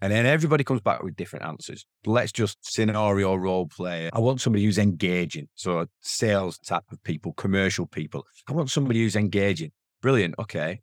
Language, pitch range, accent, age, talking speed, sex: English, 90-120 Hz, British, 30-49, 175 wpm, male